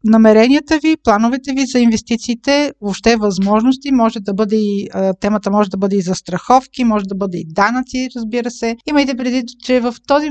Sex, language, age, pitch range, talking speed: female, Bulgarian, 50-69, 205-255 Hz, 190 wpm